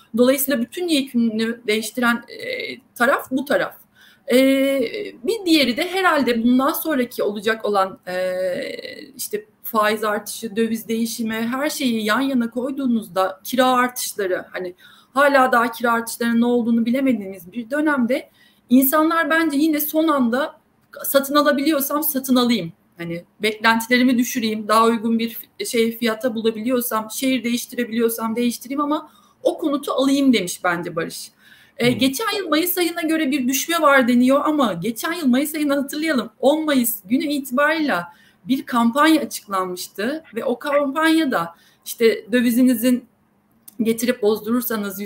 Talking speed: 130 wpm